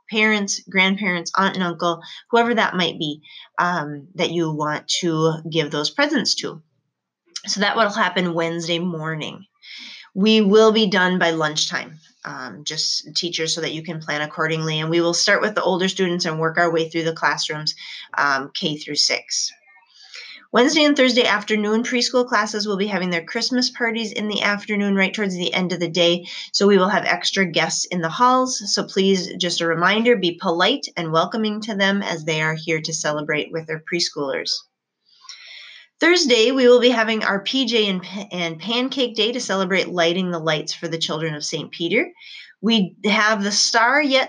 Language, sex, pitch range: English, female, 165-225 Hz